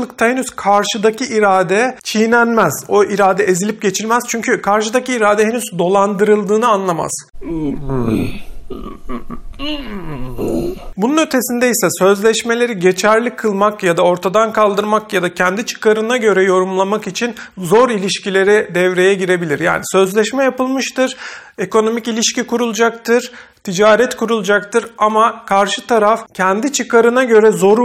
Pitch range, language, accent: 190-235 Hz, Turkish, native